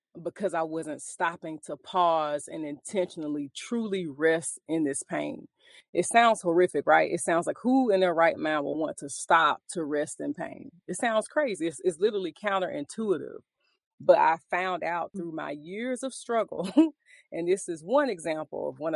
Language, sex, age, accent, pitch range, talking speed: English, female, 30-49, American, 155-215 Hz, 175 wpm